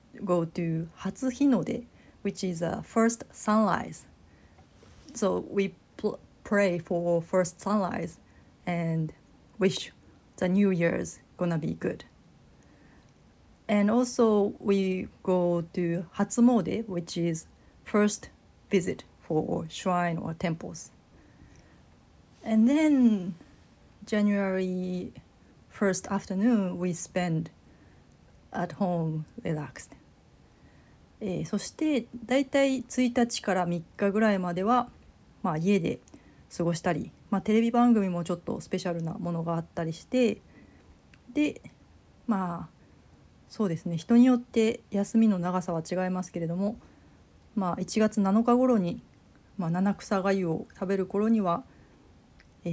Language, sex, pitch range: Japanese, female, 175-220 Hz